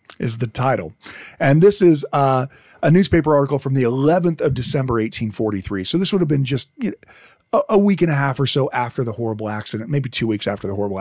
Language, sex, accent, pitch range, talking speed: English, male, American, 125-160 Hz, 230 wpm